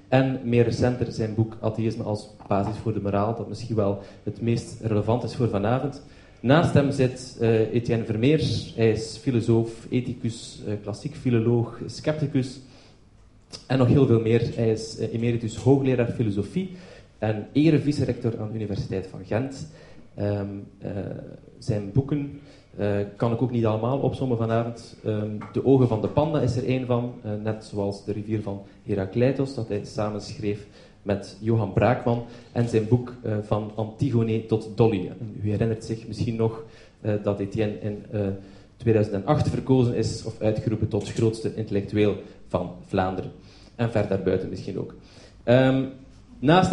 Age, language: 30-49, Dutch